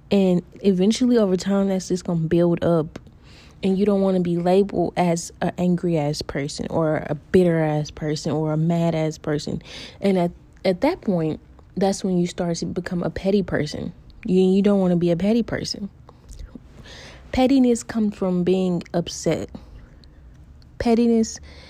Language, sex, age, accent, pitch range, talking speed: English, female, 20-39, American, 170-205 Hz, 170 wpm